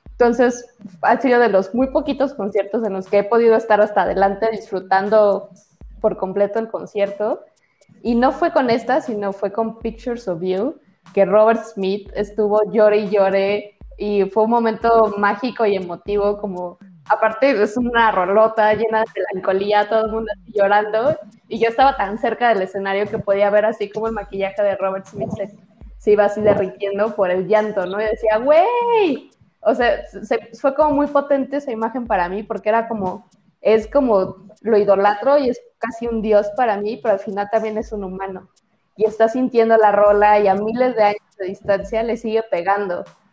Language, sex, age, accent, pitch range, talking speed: Spanish, female, 20-39, Mexican, 200-225 Hz, 185 wpm